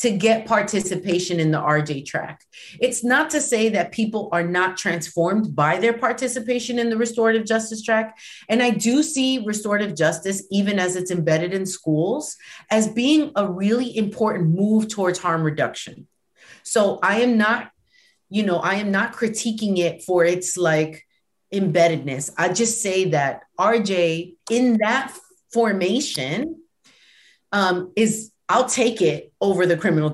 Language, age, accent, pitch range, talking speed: English, 30-49, American, 175-230 Hz, 150 wpm